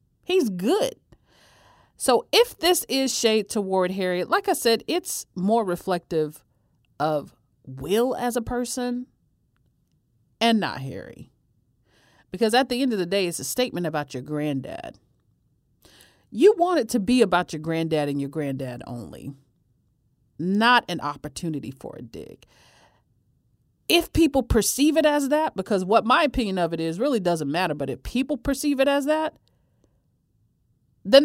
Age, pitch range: 40-59, 150-230 Hz